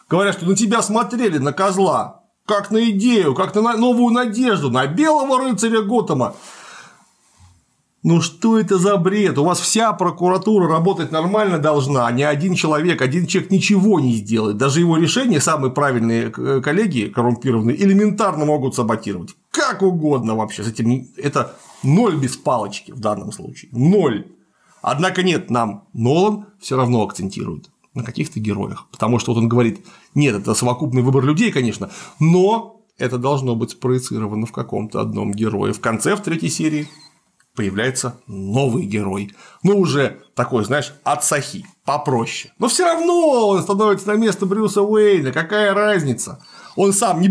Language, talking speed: Russian, 150 wpm